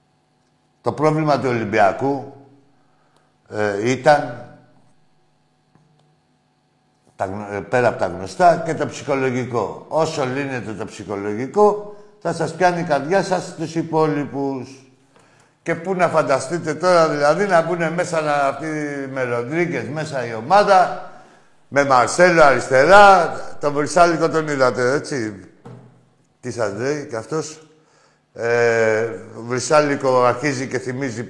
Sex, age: male, 60-79